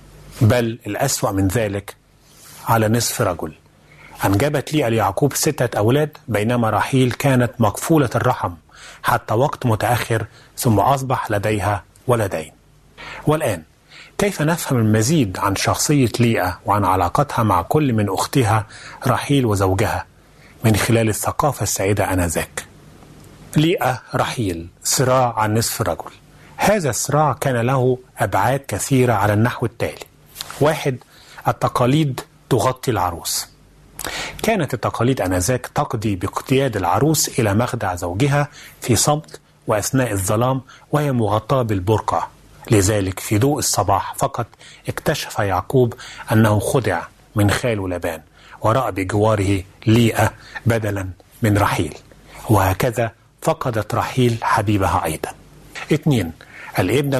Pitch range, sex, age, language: 105-130 Hz, male, 30-49, Arabic